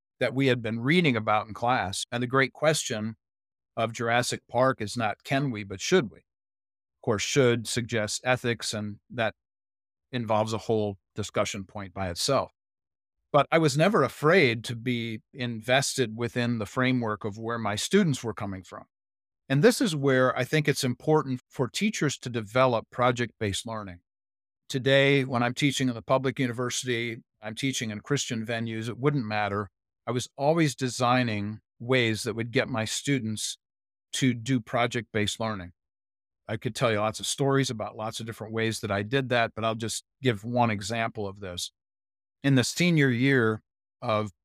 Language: English